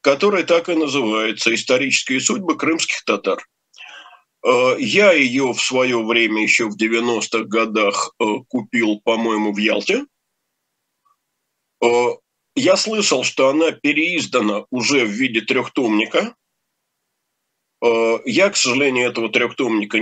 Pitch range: 110-145 Hz